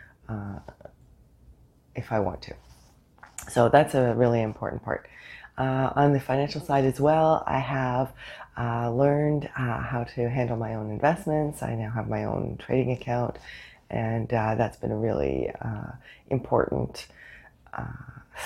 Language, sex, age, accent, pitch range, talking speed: English, female, 30-49, American, 110-130 Hz, 145 wpm